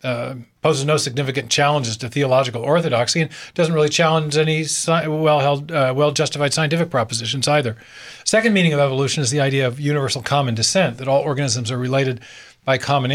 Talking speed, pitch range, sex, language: 175 wpm, 130-155 Hz, male, English